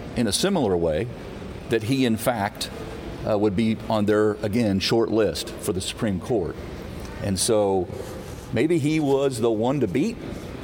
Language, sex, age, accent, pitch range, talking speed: English, male, 50-69, American, 90-110 Hz, 165 wpm